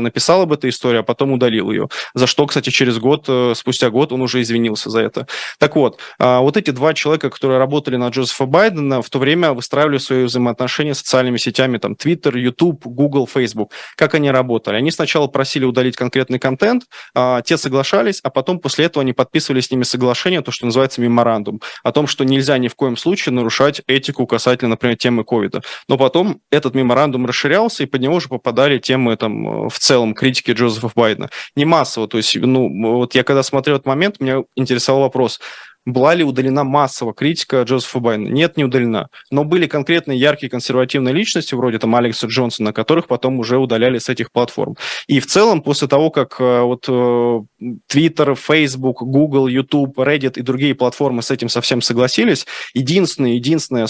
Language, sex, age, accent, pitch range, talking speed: Russian, male, 20-39, native, 120-145 Hz, 185 wpm